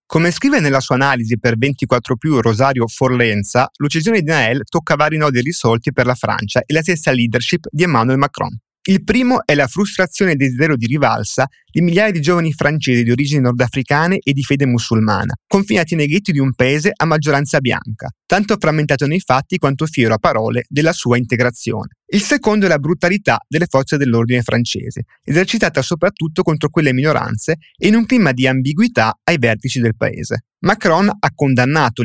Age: 30-49